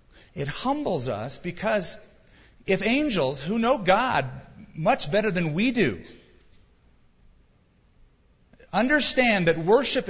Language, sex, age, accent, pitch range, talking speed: English, male, 40-59, American, 120-190 Hz, 100 wpm